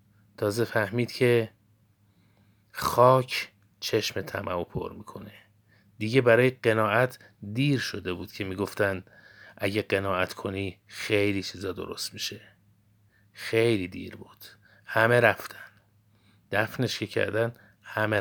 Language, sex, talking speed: Persian, male, 105 wpm